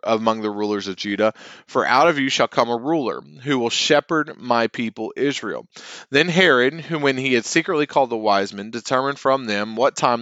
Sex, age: male, 30-49